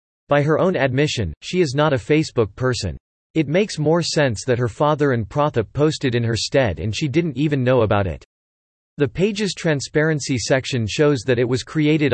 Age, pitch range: 40-59, 115-150 Hz